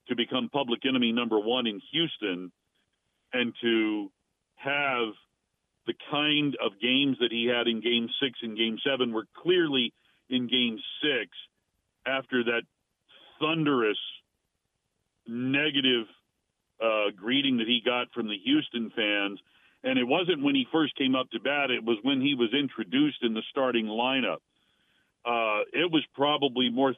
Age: 40-59